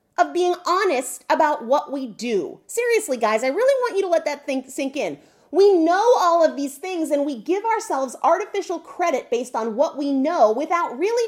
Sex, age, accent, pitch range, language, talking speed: female, 30-49, American, 275-375 Hz, English, 195 wpm